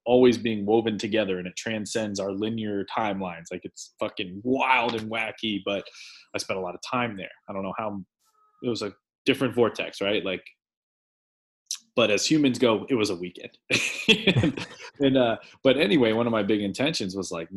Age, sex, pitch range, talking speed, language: 20-39, male, 95-120 Hz, 185 wpm, English